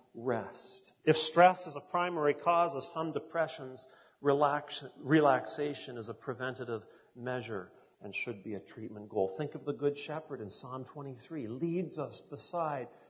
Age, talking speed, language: 40-59, 150 wpm, English